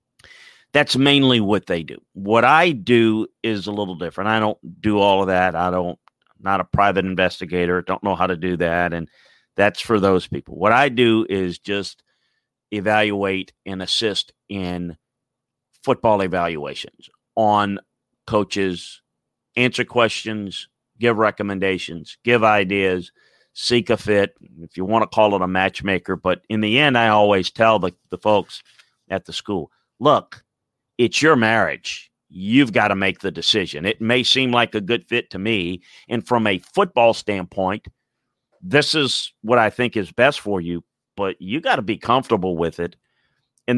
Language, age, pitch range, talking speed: English, 40-59, 95-125 Hz, 165 wpm